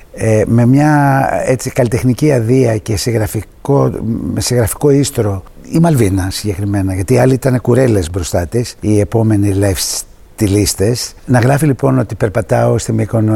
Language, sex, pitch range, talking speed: Greek, male, 105-125 Hz, 140 wpm